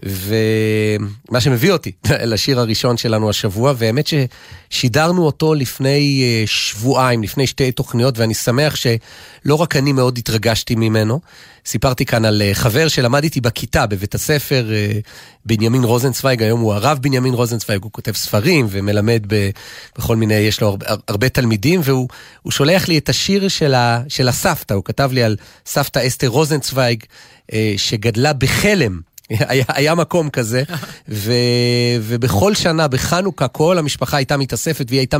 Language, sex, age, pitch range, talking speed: Hebrew, male, 40-59, 115-145 Hz, 140 wpm